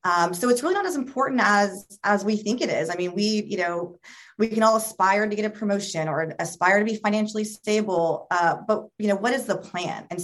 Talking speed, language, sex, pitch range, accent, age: 240 wpm, English, female, 180-235 Hz, American, 30-49